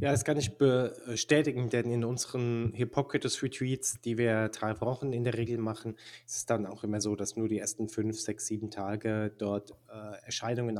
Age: 20-39